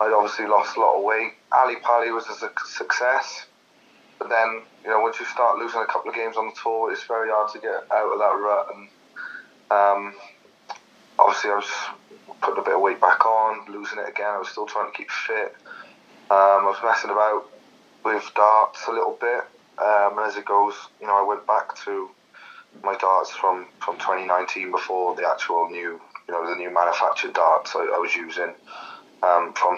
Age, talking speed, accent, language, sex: 20-39, 200 wpm, British, English, male